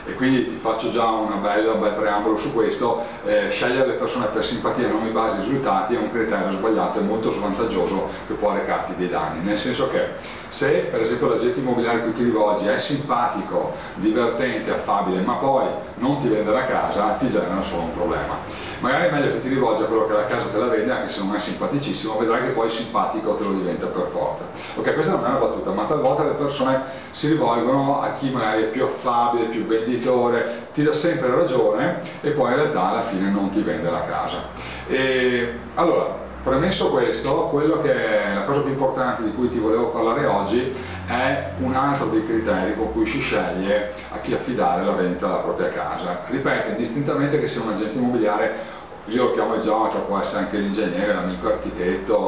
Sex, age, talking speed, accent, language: male, 40-59, 205 wpm, native, Italian